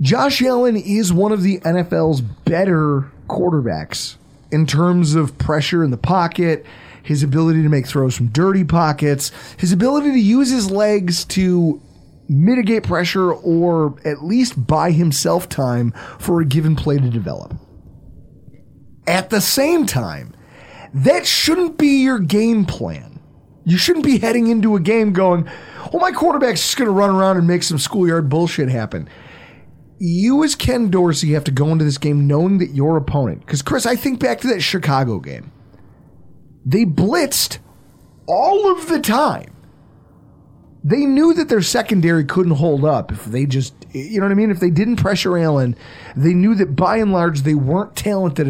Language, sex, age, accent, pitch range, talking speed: English, male, 30-49, American, 145-210 Hz, 170 wpm